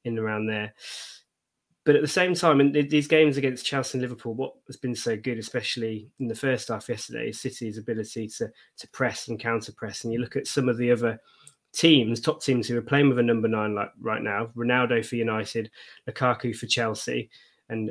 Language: English